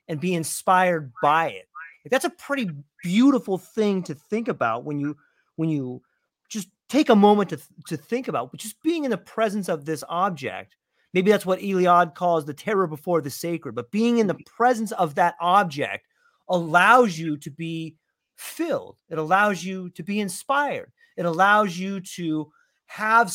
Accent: American